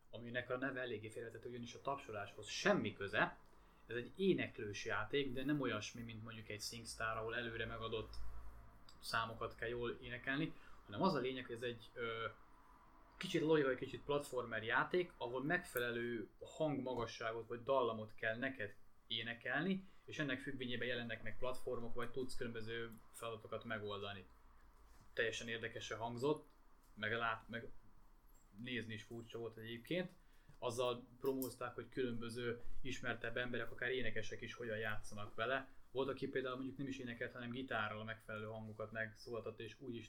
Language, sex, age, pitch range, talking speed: Hungarian, male, 20-39, 110-130 Hz, 145 wpm